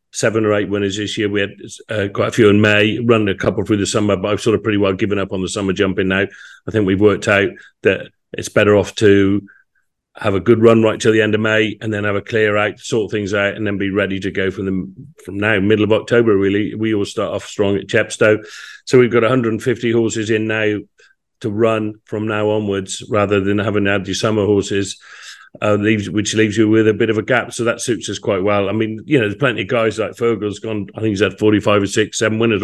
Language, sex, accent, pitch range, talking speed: English, male, British, 100-110 Hz, 260 wpm